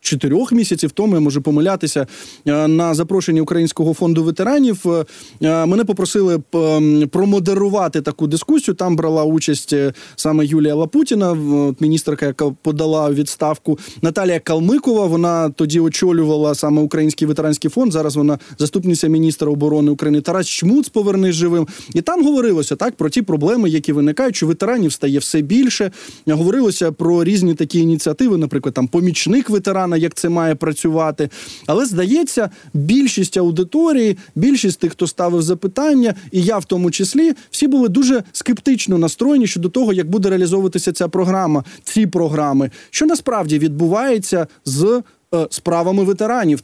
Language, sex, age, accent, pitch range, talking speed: Ukrainian, male, 20-39, native, 155-195 Hz, 140 wpm